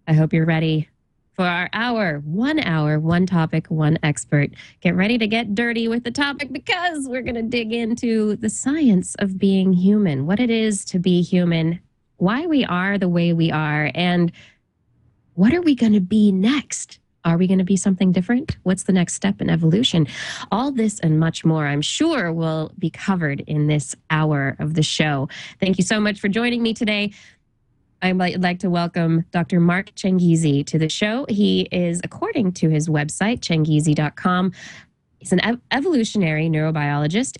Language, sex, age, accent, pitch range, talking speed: English, female, 20-39, American, 155-210 Hz, 180 wpm